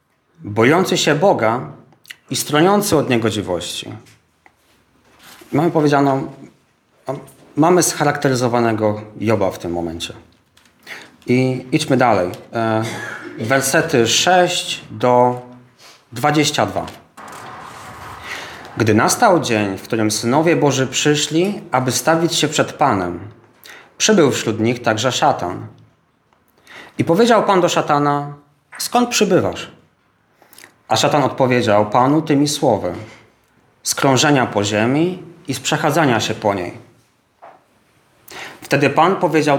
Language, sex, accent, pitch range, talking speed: Polish, male, native, 115-155 Hz, 100 wpm